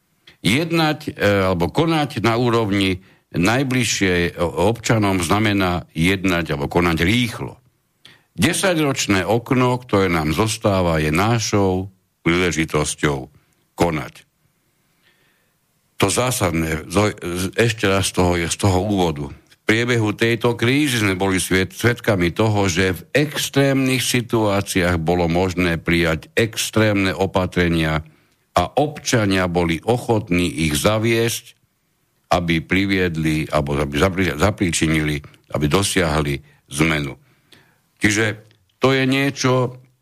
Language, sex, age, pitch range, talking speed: Slovak, male, 60-79, 90-125 Hz, 95 wpm